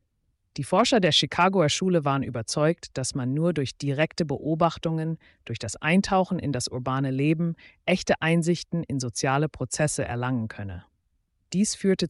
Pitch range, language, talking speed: 120-170 Hz, German, 145 wpm